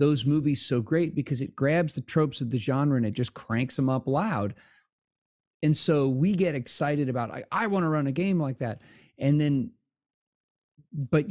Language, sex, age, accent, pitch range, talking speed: English, male, 40-59, American, 125-160 Hz, 190 wpm